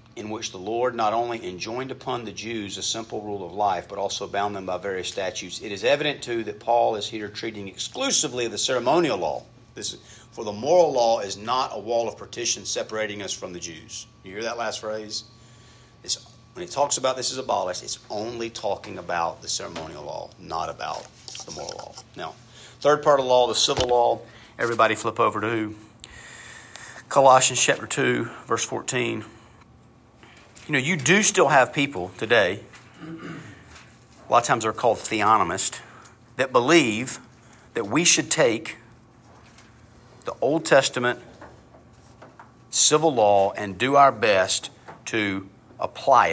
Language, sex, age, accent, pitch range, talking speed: English, male, 50-69, American, 110-130 Hz, 165 wpm